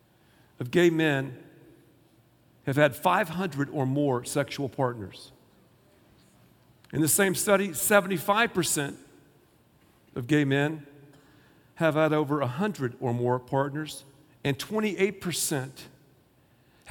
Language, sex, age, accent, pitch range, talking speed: English, male, 50-69, American, 125-180 Hz, 95 wpm